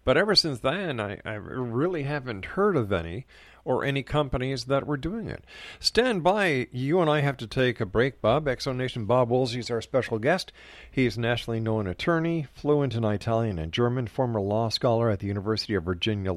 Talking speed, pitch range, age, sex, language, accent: 200 wpm, 105-145 Hz, 50-69, male, English, American